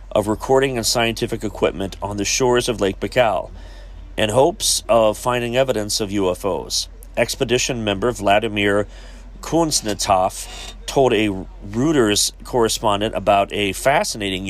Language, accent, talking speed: English, American, 120 wpm